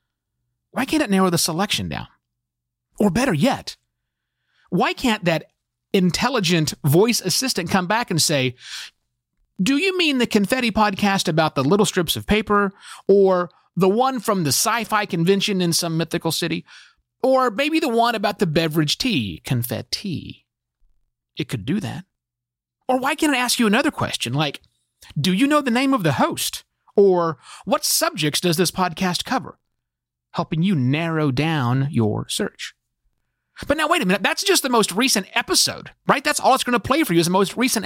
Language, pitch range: English, 145-230 Hz